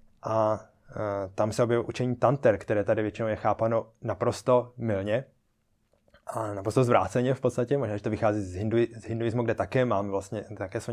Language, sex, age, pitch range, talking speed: Czech, male, 20-39, 105-120 Hz, 180 wpm